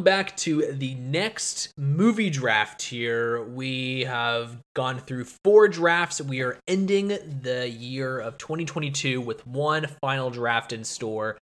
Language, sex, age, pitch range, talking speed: English, male, 20-39, 125-165 Hz, 135 wpm